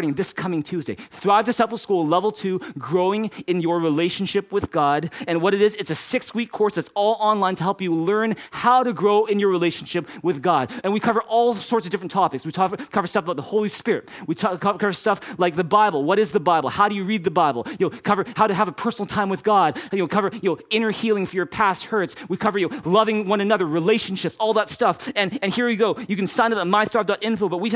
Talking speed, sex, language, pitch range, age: 250 wpm, male, English, 165-210 Hz, 30-49